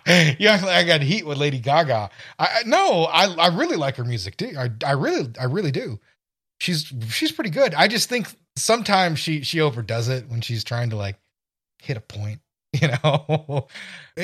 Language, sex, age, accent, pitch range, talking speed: English, male, 30-49, American, 120-160 Hz, 180 wpm